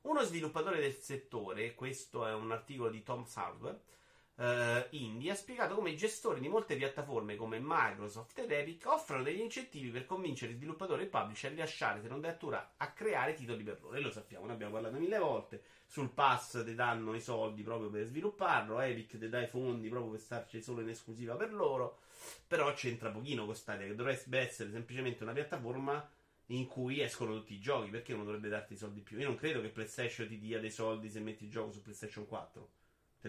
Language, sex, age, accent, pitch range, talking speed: Italian, male, 30-49, native, 110-135 Hz, 210 wpm